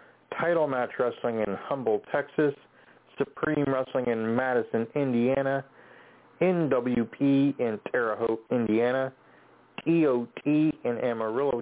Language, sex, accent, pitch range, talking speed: English, male, American, 120-150 Hz, 100 wpm